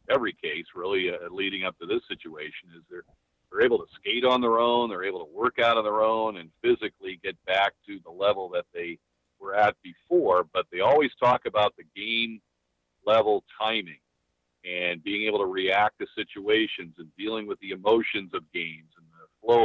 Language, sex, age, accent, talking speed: English, male, 50-69, American, 195 wpm